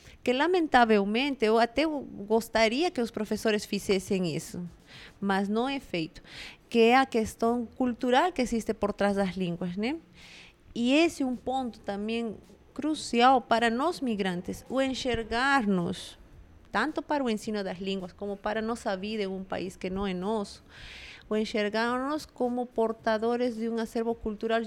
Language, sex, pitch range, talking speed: Portuguese, female, 200-245 Hz, 150 wpm